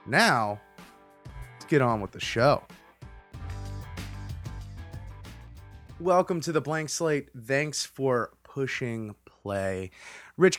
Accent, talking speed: American, 95 wpm